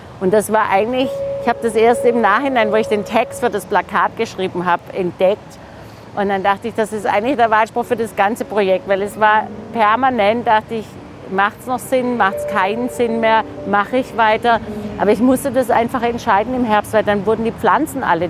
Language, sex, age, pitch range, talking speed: German, female, 50-69, 180-225 Hz, 215 wpm